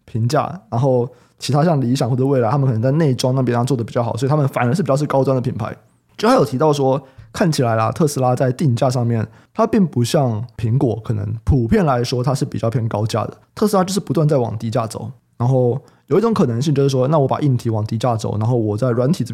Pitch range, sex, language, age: 115-155 Hz, male, Chinese, 20-39